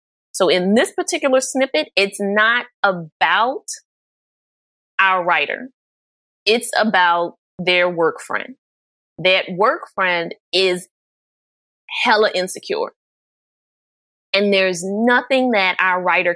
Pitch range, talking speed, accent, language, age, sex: 180-235 Hz, 100 wpm, American, English, 20-39, female